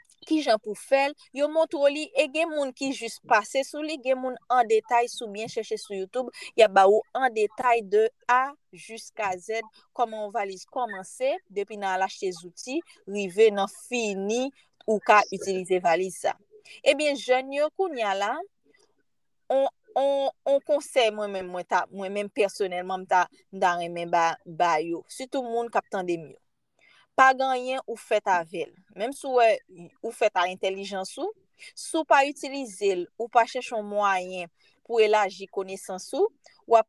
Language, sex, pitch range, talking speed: French, female, 200-275 Hz, 145 wpm